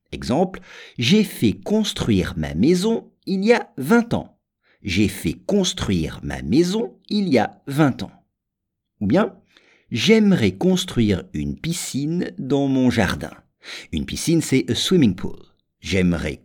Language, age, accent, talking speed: English, 50-69, French, 135 wpm